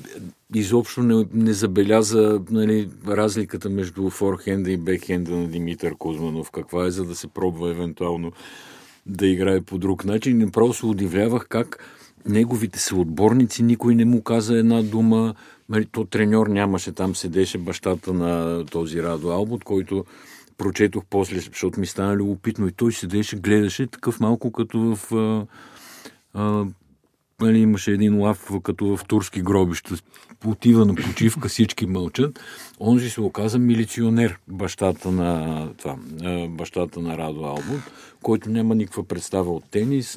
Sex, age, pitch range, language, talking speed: male, 50-69, 90-110 Hz, Bulgarian, 140 wpm